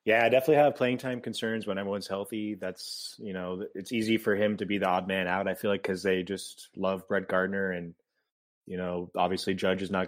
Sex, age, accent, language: male, 20-39, American, English